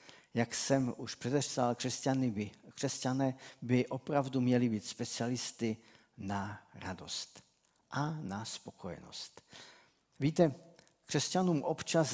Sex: male